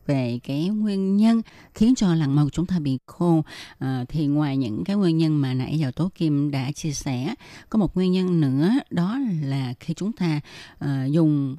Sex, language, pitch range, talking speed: female, Vietnamese, 145-180 Hz, 205 wpm